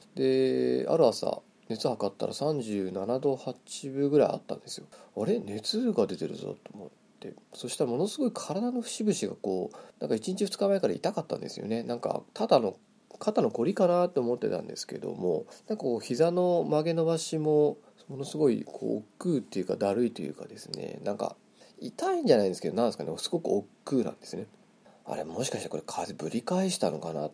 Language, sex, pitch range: Japanese, male, 105-170 Hz